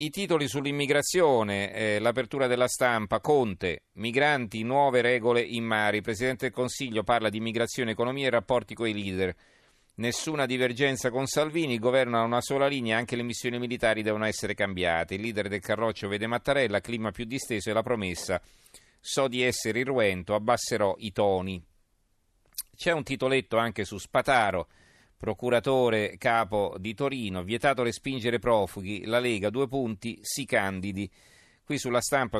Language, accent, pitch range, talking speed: Italian, native, 105-125 Hz, 155 wpm